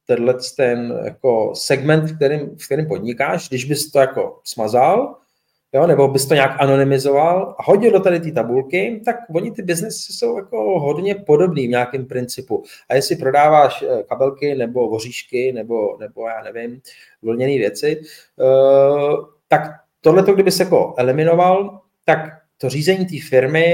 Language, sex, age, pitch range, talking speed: Czech, male, 30-49, 130-175 Hz, 150 wpm